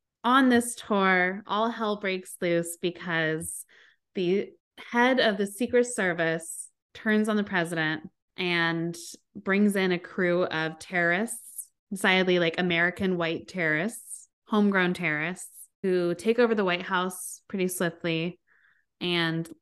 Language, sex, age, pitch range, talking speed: English, female, 20-39, 165-200 Hz, 125 wpm